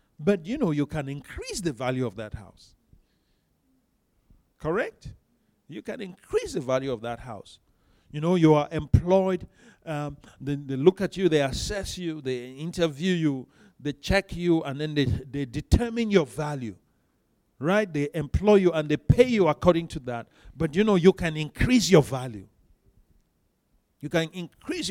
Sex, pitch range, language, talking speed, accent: male, 130-185 Hz, English, 165 wpm, Nigerian